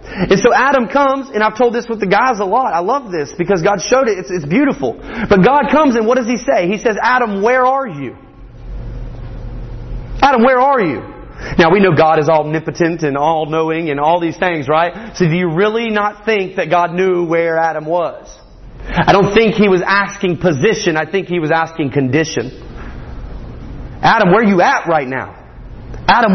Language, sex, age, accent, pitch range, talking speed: English, male, 30-49, American, 175-255 Hz, 200 wpm